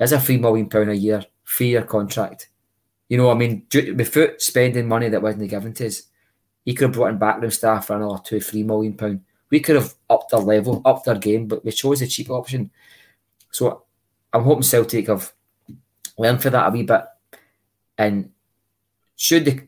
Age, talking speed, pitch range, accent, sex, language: 20-39, 190 wpm, 105-120 Hz, British, male, English